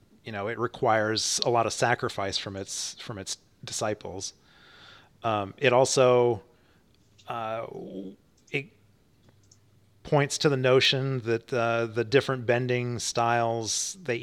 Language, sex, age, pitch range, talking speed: English, male, 30-49, 105-130 Hz, 120 wpm